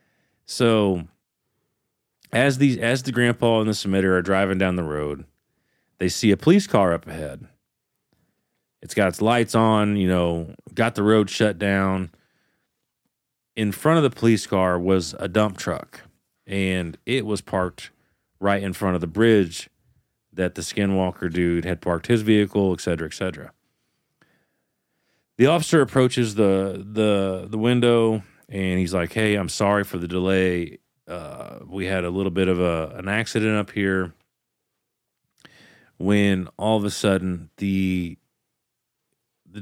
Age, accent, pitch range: 40-59, American, 90-110 Hz